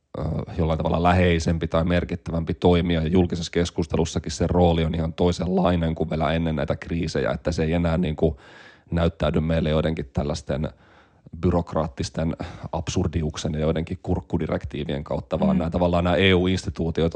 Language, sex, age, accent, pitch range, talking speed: Finnish, male, 30-49, native, 80-95 Hz, 135 wpm